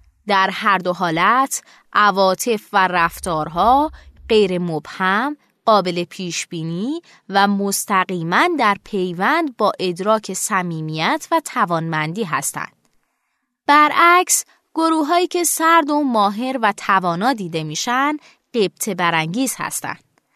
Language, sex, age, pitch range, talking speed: Persian, female, 20-39, 185-280 Hz, 105 wpm